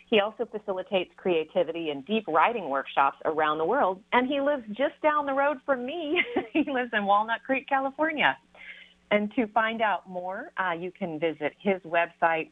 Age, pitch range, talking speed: 40-59, 160-245 Hz, 175 wpm